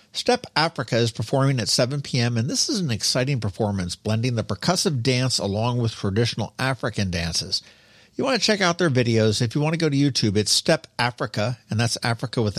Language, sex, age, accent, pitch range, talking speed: English, male, 50-69, American, 105-150 Hz, 205 wpm